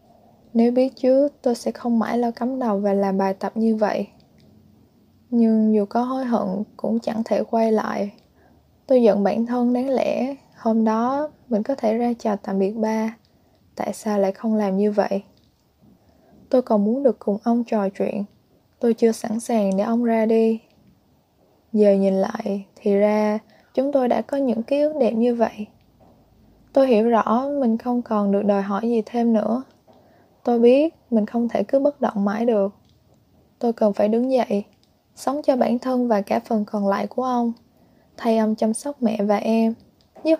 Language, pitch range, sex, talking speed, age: Vietnamese, 210-245 Hz, female, 185 wpm, 10-29